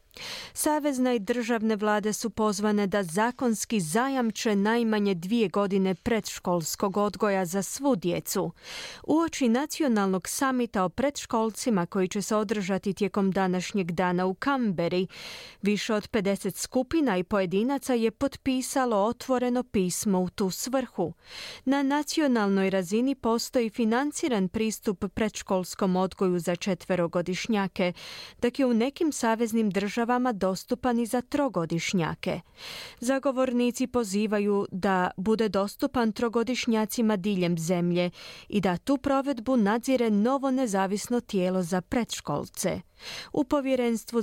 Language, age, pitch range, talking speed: Croatian, 30-49, 190-245 Hz, 115 wpm